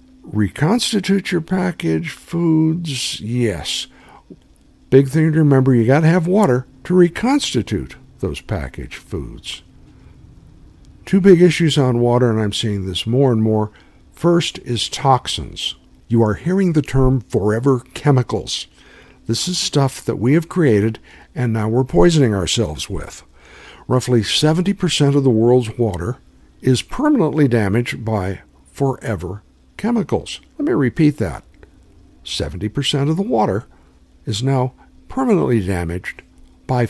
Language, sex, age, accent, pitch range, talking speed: English, male, 60-79, American, 100-155 Hz, 130 wpm